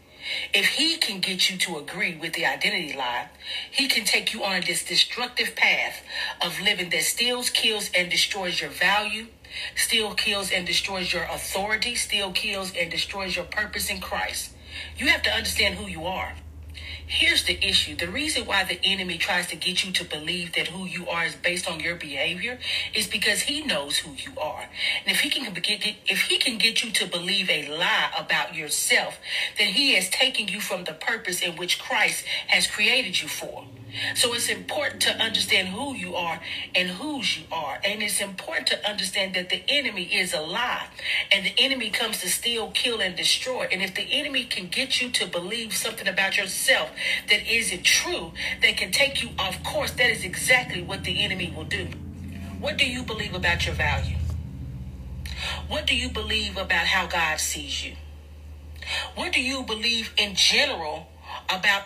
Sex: female